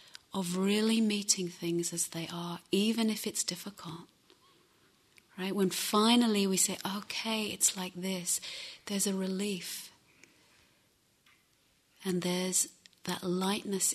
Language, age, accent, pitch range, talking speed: English, 30-49, British, 175-200 Hz, 115 wpm